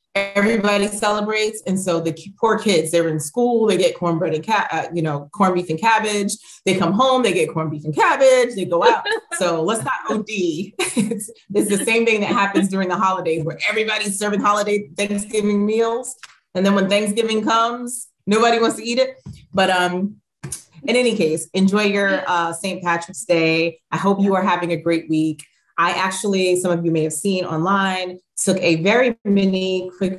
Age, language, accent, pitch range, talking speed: 30-49, English, American, 165-210 Hz, 190 wpm